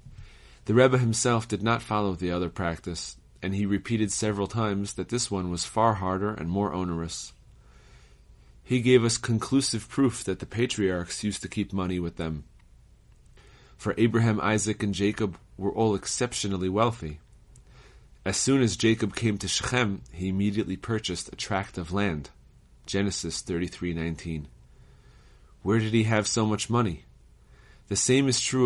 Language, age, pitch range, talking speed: English, 30-49, 90-115 Hz, 155 wpm